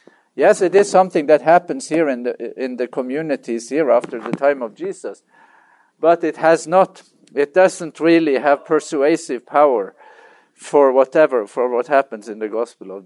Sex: male